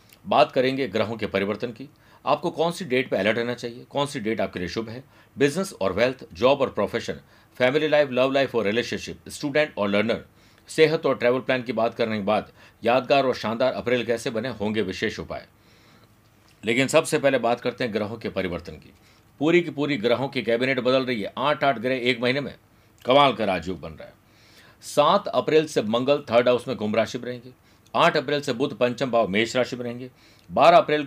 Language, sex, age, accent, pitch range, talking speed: Hindi, male, 50-69, native, 115-140 Hz, 205 wpm